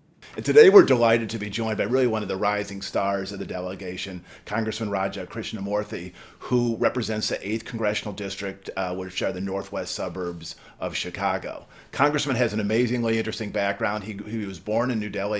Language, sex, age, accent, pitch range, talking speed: English, male, 40-59, American, 100-115 Hz, 180 wpm